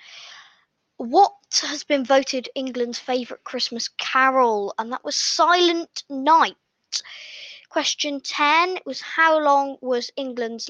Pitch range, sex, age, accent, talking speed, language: 240-320 Hz, female, 20-39, British, 110 wpm, English